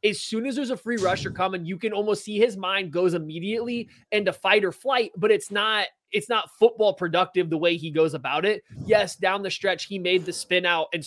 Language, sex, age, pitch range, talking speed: English, male, 20-39, 165-215 Hz, 235 wpm